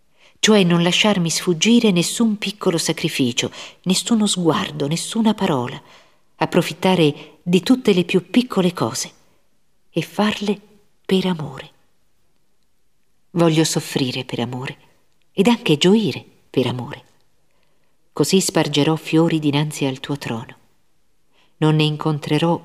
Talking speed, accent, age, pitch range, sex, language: 110 wpm, native, 50-69, 145-175 Hz, female, Italian